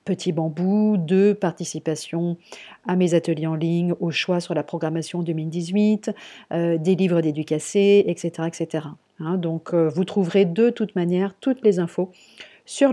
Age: 40-59